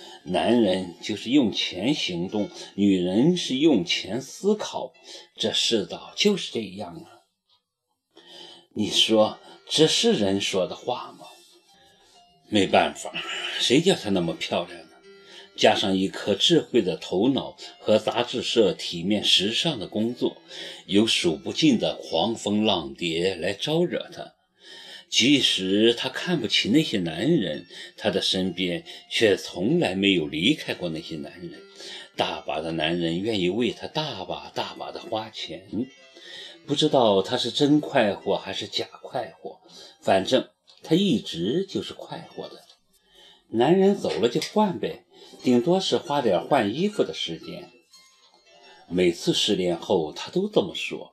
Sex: male